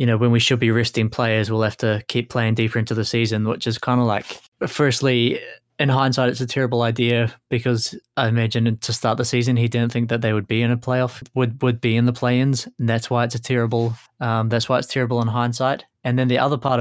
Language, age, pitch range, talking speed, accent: English, 20-39, 115-125 Hz, 250 wpm, Australian